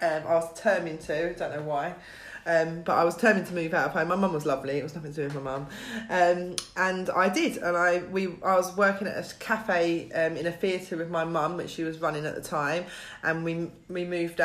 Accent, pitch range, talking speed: British, 160-185 Hz, 260 wpm